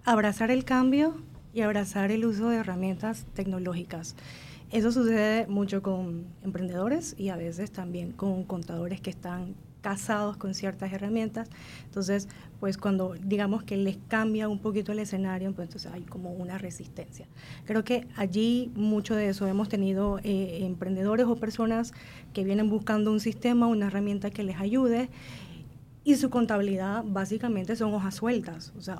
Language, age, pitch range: Spanish, 30-49, 190-220 Hz